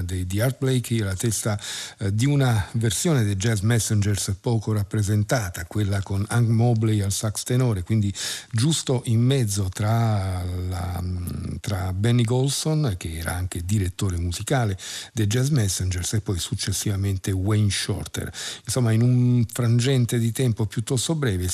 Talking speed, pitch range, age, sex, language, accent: 140 wpm, 100-120 Hz, 50-69, male, Italian, native